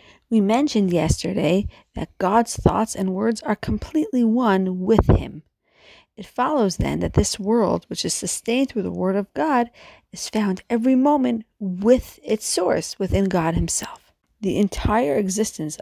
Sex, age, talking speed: female, 40-59, 150 wpm